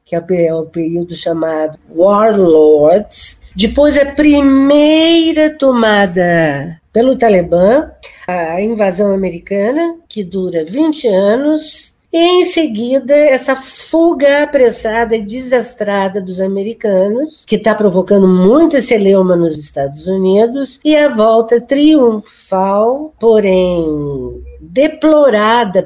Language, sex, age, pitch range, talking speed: Portuguese, female, 50-69, 185-255 Hz, 100 wpm